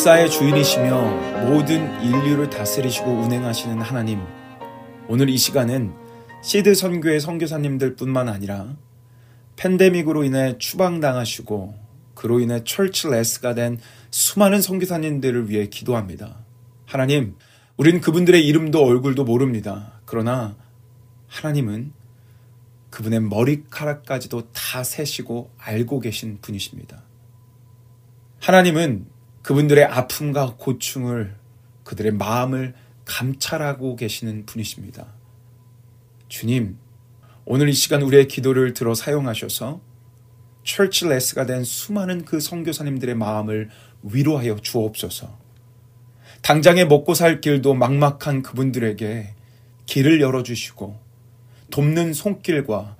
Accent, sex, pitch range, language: native, male, 115-145 Hz, Korean